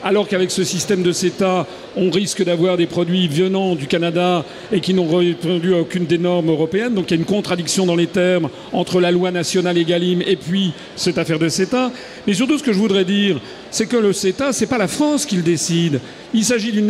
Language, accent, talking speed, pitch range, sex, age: French, French, 230 wpm, 175-220 Hz, male, 50-69